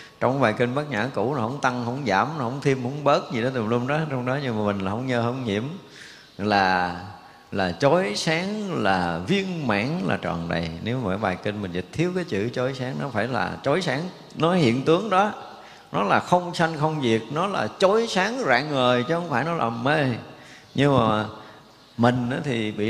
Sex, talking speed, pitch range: male, 220 wpm, 110-150 Hz